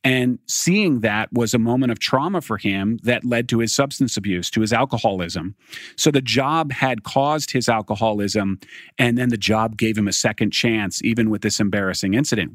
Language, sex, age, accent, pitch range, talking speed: English, male, 40-59, American, 110-140 Hz, 190 wpm